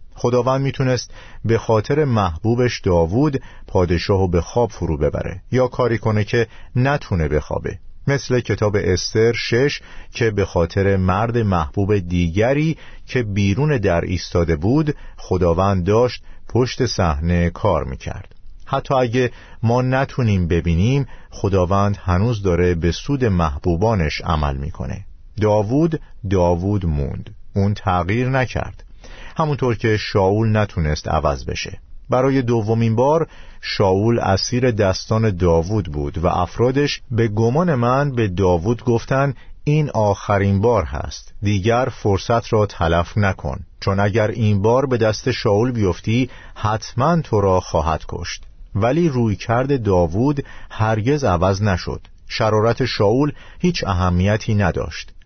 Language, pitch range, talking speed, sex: Persian, 90-120 Hz, 120 wpm, male